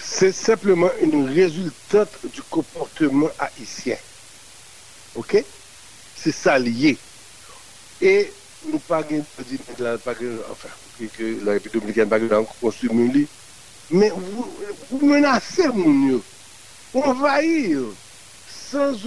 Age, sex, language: 60-79, male, French